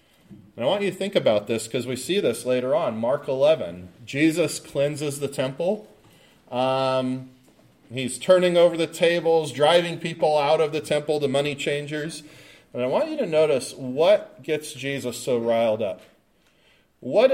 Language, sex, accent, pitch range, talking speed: English, male, American, 115-165 Hz, 165 wpm